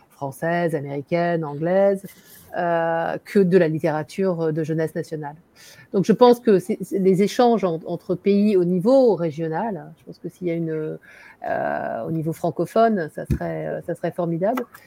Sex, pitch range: female, 170-205 Hz